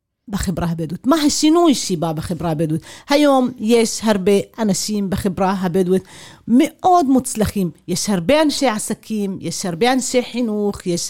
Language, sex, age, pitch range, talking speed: Hebrew, female, 40-59, 195-255 Hz, 130 wpm